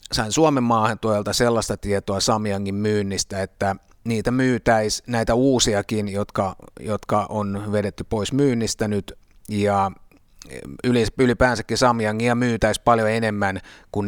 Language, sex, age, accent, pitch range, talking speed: Finnish, male, 30-49, native, 100-120 Hz, 115 wpm